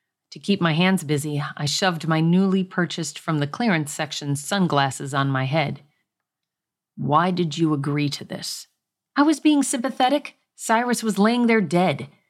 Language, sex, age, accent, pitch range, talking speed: English, female, 40-59, American, 150-200 Hz, 160 wpm